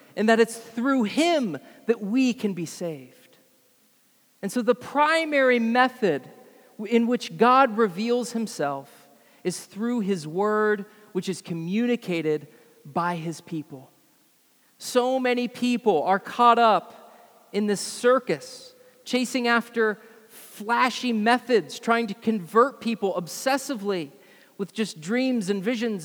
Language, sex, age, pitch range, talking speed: English, male, 40-59, 205-260 Hz, 120 wpm